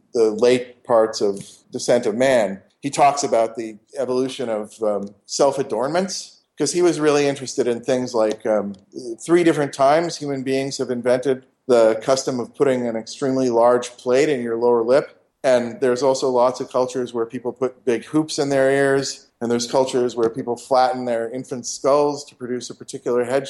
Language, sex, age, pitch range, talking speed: English, male, 40-59, 125-145 Hz, 180 wpm